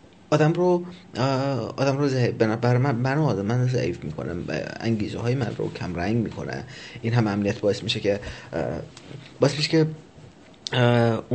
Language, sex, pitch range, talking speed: Persian, male, 110-140 Hz, 135 wpm